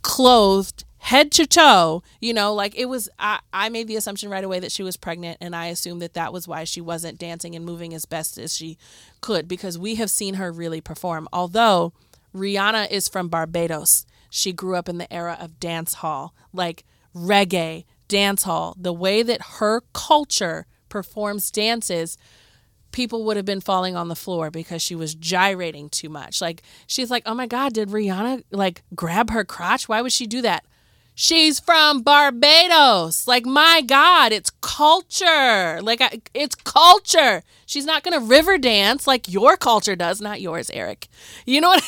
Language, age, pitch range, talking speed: English, 30-49, 175-255 Hz, 180 wpm